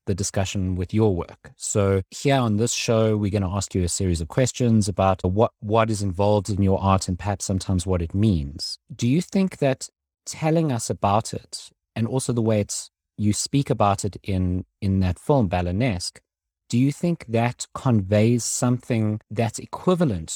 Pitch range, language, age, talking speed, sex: 95-125 Hz, English, 30-49, 185 wpm, male